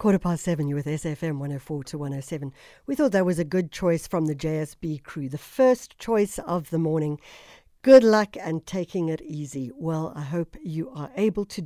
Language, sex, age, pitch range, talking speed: English, female, 60-79, 150-175 Hz, 200 wpm